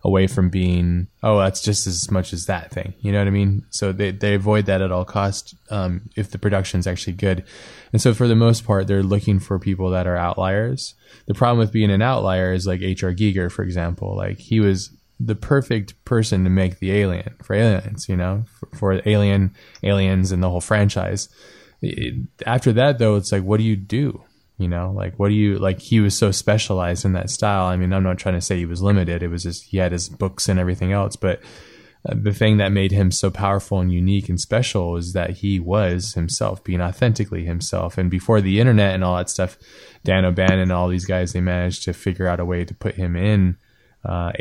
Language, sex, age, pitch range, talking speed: English, male, 20-39, 90-105 Hz, 225 wpm